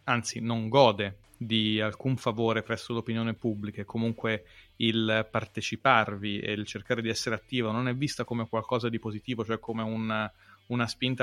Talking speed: 160 wpm